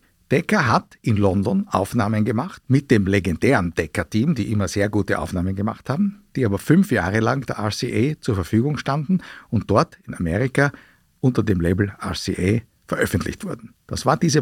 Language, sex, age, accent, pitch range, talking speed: German, male, 50-69, Austrian, 105-160 Hz, 165 wpm